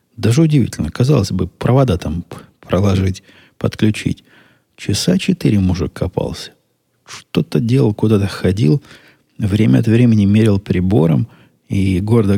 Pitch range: 90-110 Hz